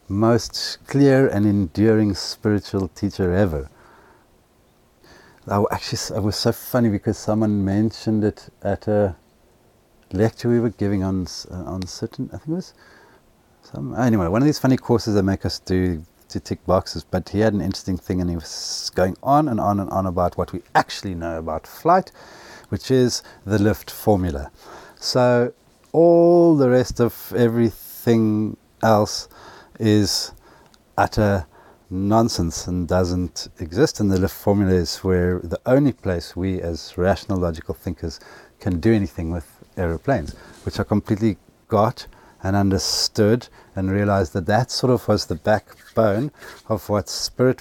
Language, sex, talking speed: English, male, 155 wpm